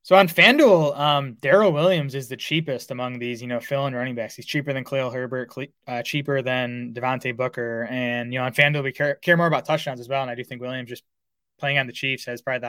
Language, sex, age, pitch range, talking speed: English, male, 20-39, 125-145 Hz, 245 wpm